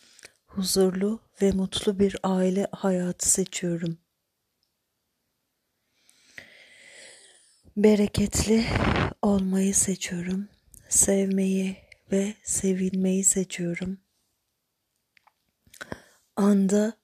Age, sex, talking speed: 40-59, female, 55 wpm